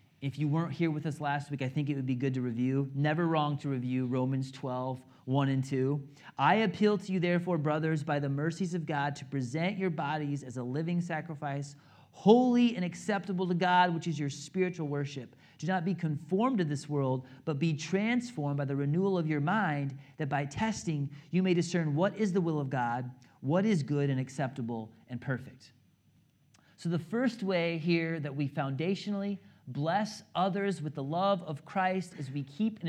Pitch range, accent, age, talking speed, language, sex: 135-180 Hz, American, 30-49, 195 wpm, English, male